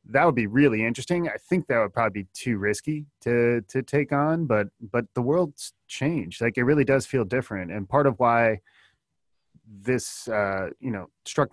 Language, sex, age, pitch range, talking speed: English, male, 20-39, 100-120 Hz, 195 wpm